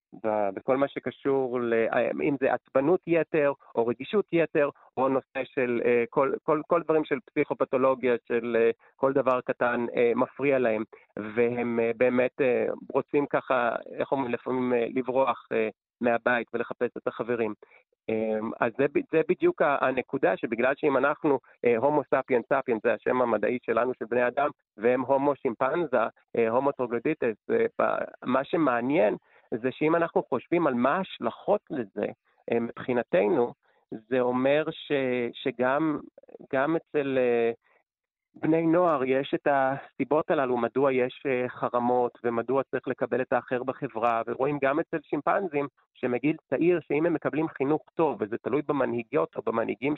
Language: Hebrew